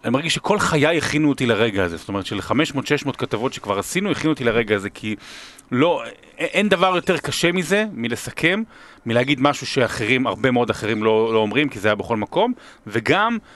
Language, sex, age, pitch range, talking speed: Hebrew, male, 30-49, 105-135 Hz, 185 wpm